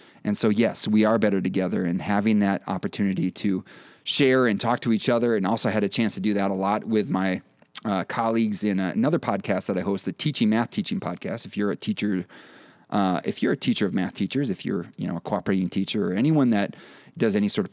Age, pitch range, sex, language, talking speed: 30-49, 105-130 Hz, male, English, 235 wpm